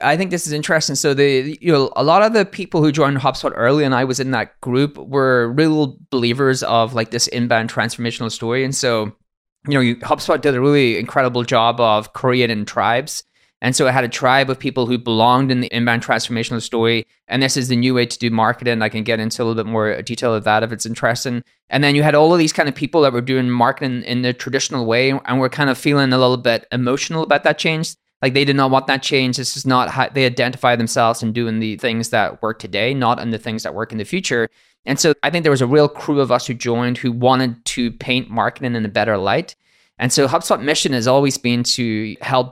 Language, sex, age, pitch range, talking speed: English, male, 20-39, 115-140 Hz, 250 wpm